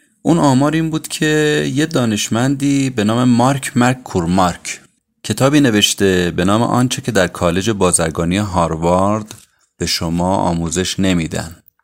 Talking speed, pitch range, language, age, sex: 130 wpm, 90-120 Hz, Persian, 30-49, male